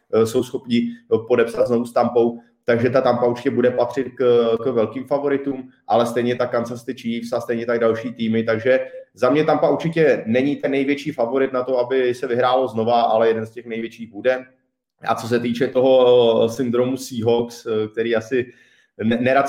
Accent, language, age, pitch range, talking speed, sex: native, Czech, 30-49, 115-130 Hz, 175 wpm, male